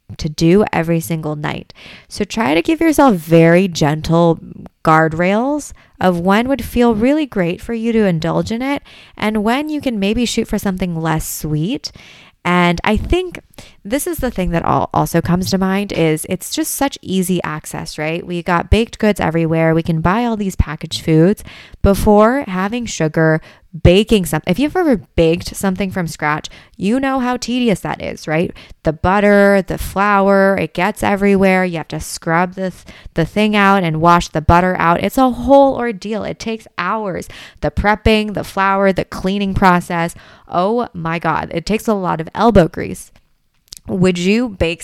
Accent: American